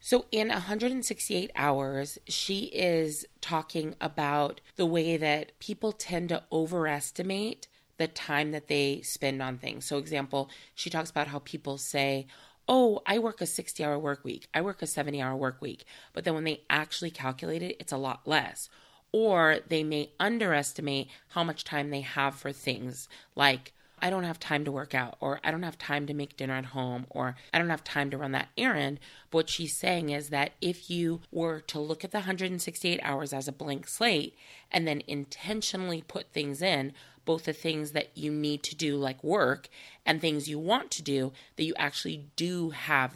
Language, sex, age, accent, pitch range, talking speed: English, female, 30-49, American, 140-170 Hz, 190 wpm